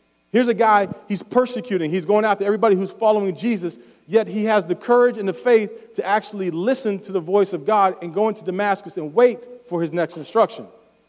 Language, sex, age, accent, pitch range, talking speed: English, male, 40-59, American, 165-210 Hz, 205 wpm